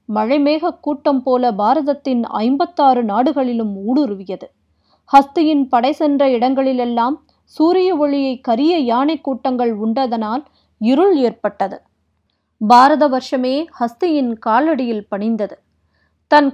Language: Tamil